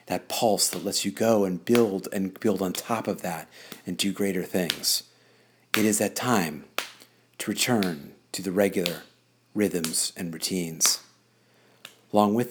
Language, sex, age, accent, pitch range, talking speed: English, male, 40-59, American, 95-110 Hz, 155 wpm